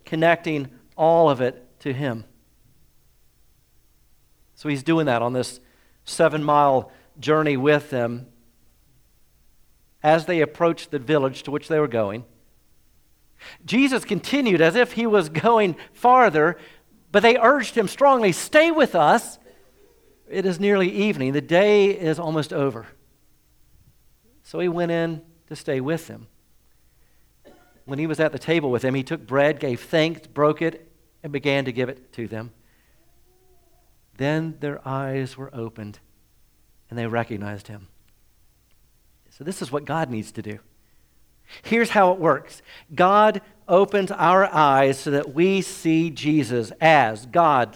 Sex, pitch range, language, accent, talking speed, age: male, 125-180 Hz, English, American, 140 wpm, 50-69